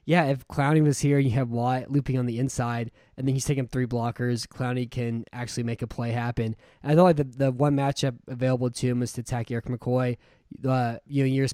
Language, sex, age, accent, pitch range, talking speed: English, male, 10-29, American, 120-140 Hz, 245 wpm